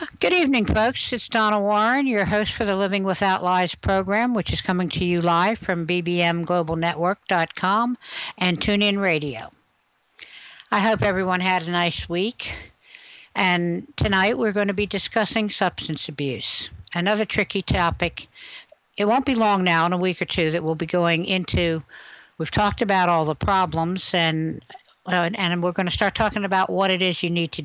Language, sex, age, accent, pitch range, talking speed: English, female, 60-79, American, 165-205 Hz, 170 wpm